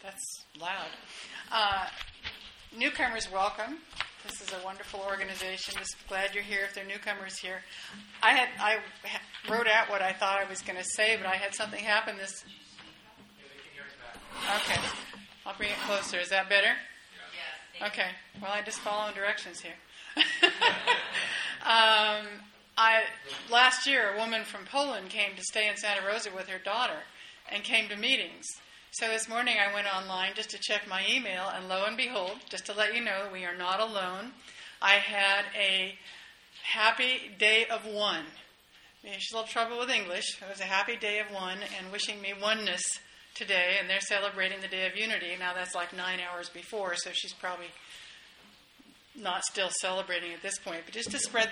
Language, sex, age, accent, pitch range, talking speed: English, female, 40-59, American, 190-220 Hz, 175 wpm